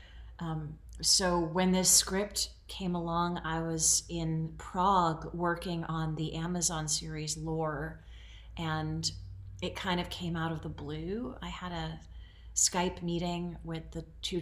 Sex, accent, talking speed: female, American, 140 wpm